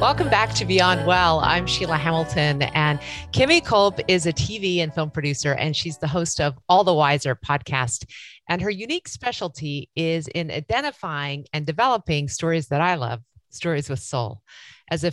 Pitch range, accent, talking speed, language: 140-170 Hz, American, 175 wpm, English